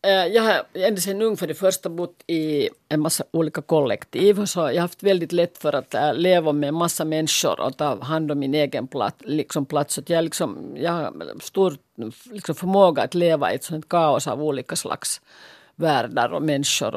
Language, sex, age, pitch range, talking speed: Finnish, female, 50-69, 160-195 Hz, 185 wpm